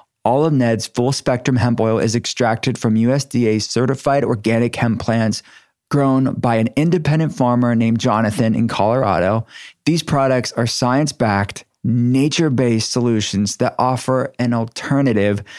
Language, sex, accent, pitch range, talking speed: English, male, American, 115-140 Hz, 125 wpm